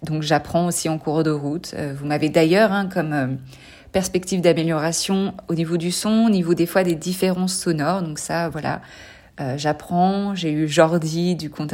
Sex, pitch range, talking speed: female, 155-195 Hz, 185 wpm